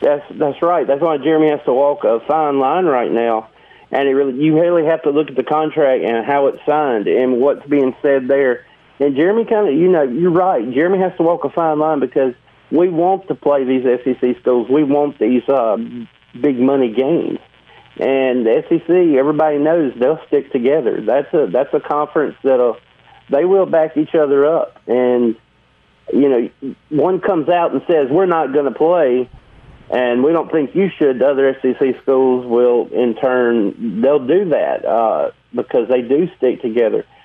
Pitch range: 130-175 Hz